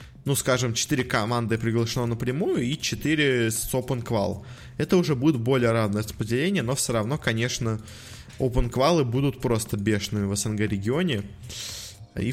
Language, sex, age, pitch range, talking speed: Russian, male, 20-39, 110-135 Hz, 130 wpm